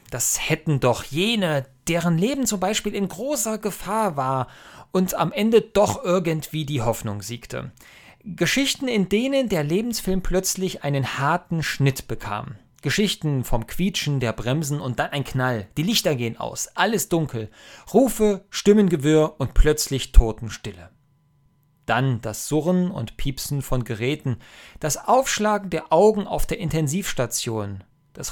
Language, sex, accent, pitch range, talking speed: German, male, German, 120-175 Hz, 140 wpm